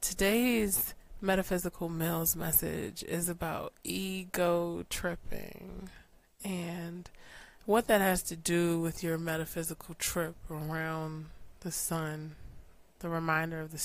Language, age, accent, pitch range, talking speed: English, 20-39, American, 160-180 Hz, 110 wpm